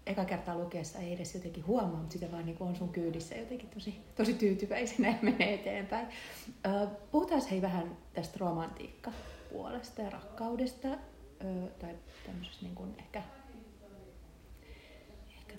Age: 30-49